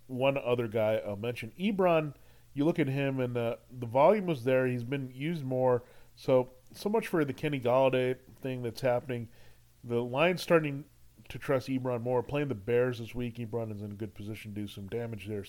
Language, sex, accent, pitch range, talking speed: English, male, American, 115-140 Hz, 205 wpm